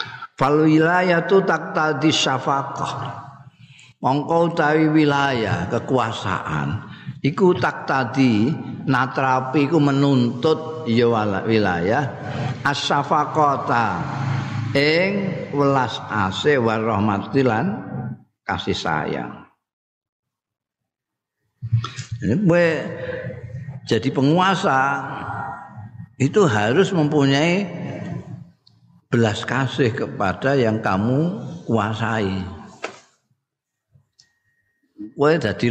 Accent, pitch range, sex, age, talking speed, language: native, 120-155 Hz, male, 50-69, 65 wpm, Indonesian